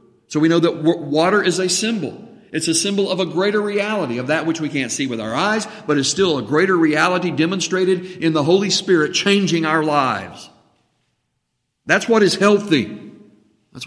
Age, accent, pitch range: 50-69, American, 150-190 Hz